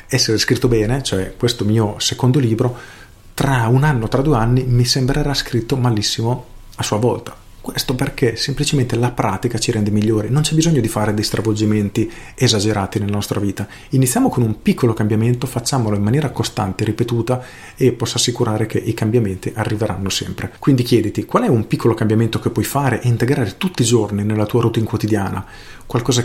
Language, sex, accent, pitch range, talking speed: Italian, male, native, 105-125 Hz, 180 wpm